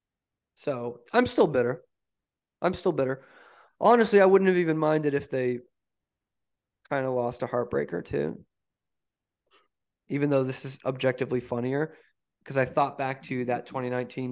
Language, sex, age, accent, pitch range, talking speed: English, male, 20-39, American, 125-175 Hz, 140 wpm